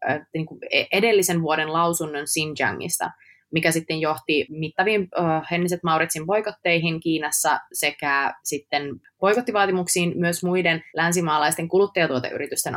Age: 20-39